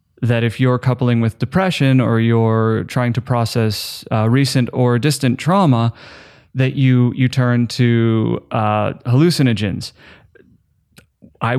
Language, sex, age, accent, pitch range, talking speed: English, male, 30-49, American, 115-155 Hz, 125 wpm